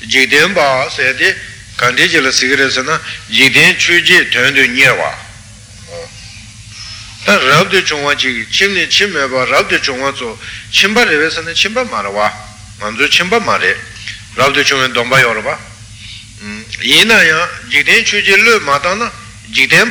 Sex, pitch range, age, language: male, 105-145 Hz, 60-79, Italian